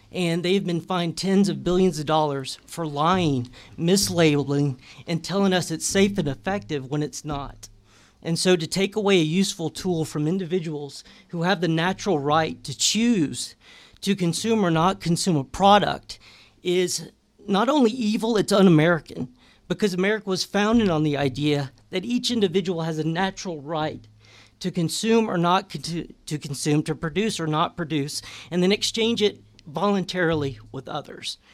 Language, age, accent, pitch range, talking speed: English, 40-59, American, 145-195 Hz, 160 wpm